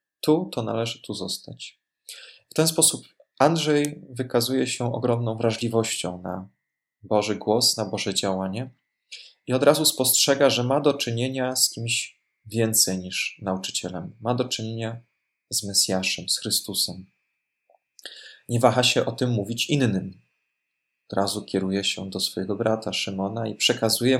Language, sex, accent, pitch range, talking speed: Polish, male, native, 100-125 Hz, 140 wpm